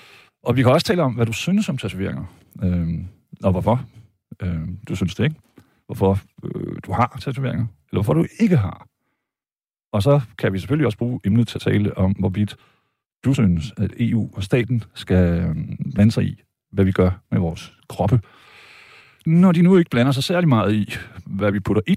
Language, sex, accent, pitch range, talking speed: Danish, male, native, 95-125 Hz, 195 wpm